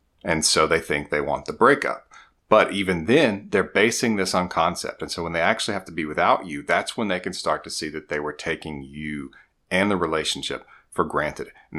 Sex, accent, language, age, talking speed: male, American, English, 40-59, 225 wpm